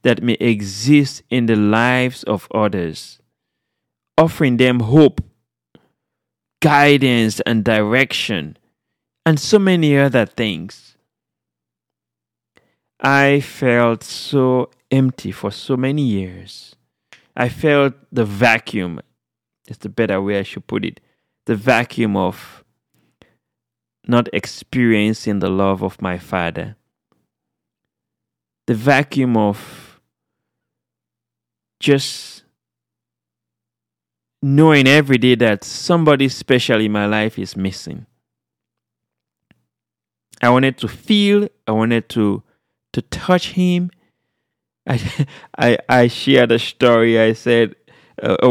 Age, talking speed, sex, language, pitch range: 30-49, 105 wpm, male, English, 100-135 Hz